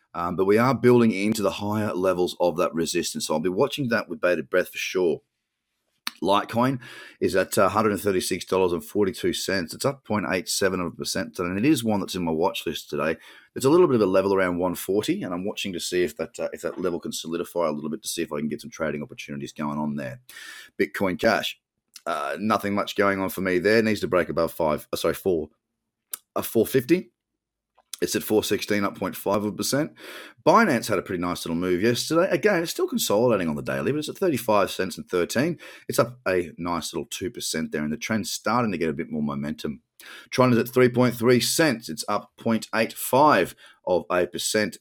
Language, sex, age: English, male, 30-49